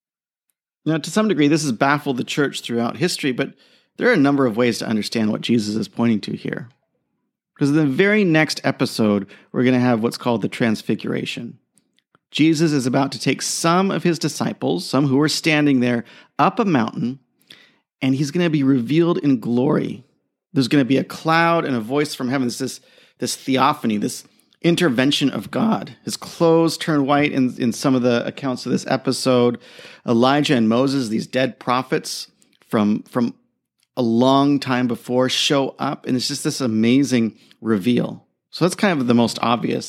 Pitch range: 125-155 Hz